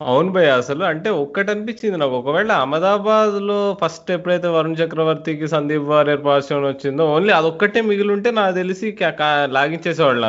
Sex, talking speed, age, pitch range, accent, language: male, 140 wpm, 20-39, 125-165 Hz, native, Telugu